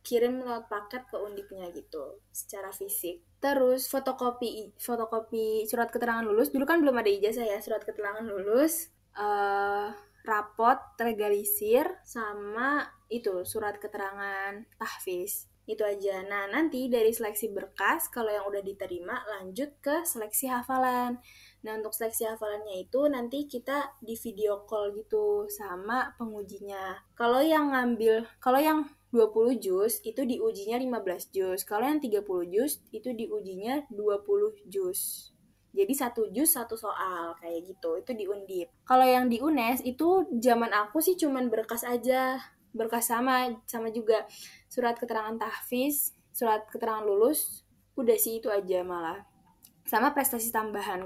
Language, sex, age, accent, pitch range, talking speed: Indonesian, female, 10-29, native, 205-260 Hz, 135 wpm